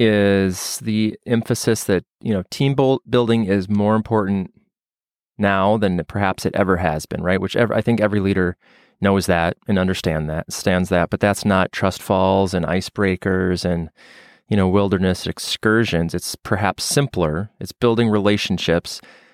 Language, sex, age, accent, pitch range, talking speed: English, male, 30-49, American, 95-110 Hz, 155 wpm